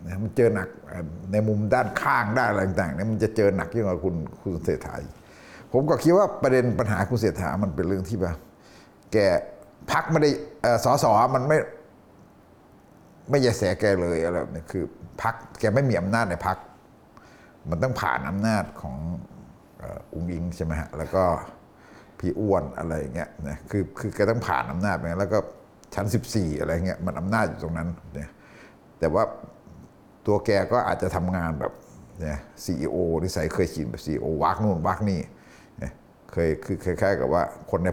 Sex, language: male, Thai